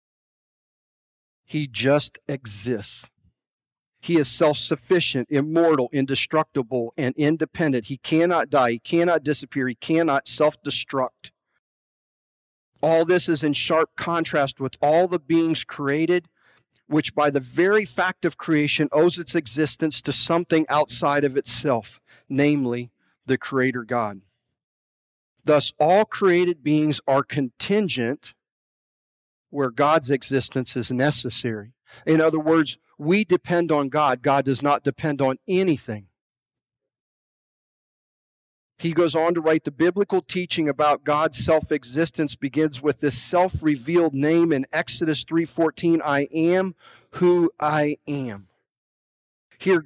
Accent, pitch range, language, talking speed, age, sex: American, 135-165 Hz, English, 120 wpm, 40-59, male